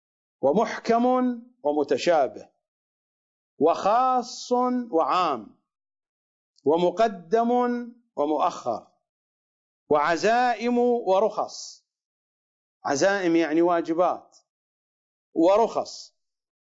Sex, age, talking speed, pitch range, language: male, 50-69, 45 wpm, 190-255 Hz, English